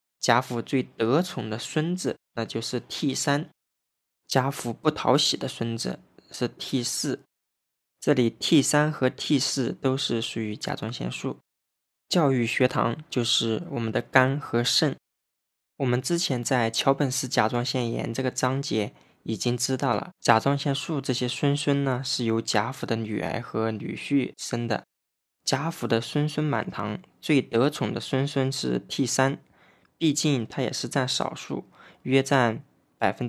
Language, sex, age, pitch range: Chinese, male, 20-39, 115-140 Hz